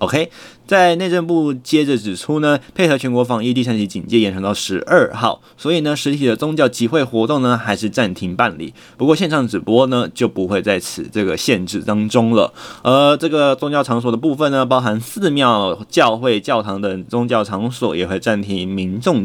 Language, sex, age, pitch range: Chinese, male, 20-39, 100-130 Hz